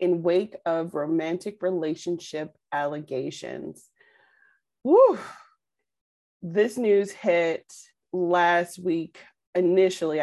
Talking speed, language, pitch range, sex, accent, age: 75 wpm, English, 165-190 Hz, female, American, 30-49